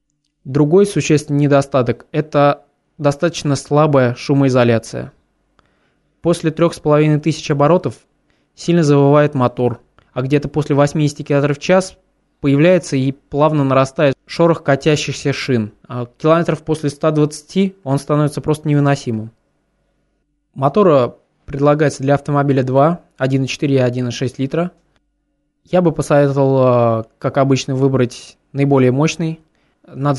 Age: 20-39